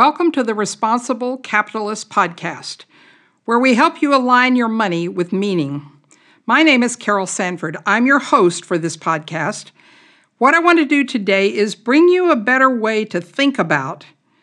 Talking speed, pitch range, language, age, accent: 170 wpm, 195-280 Hz, English, 60-79, American